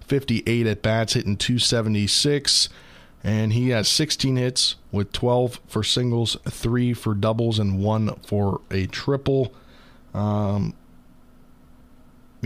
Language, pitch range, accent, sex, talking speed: English, 105-120 Hz, American, male, 110 wpm